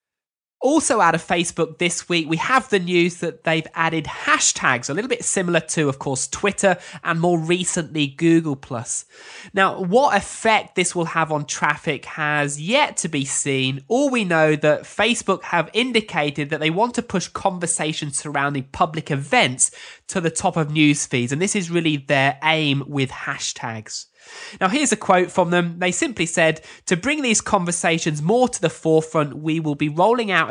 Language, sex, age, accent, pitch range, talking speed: English, male, 20-39, British, 155-195 Hz, 180 wpm